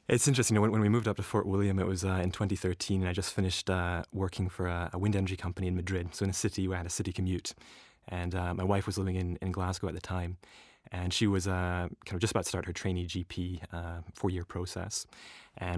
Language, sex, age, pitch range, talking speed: English, male, 20-39, 90-105 Hz, 235 wpm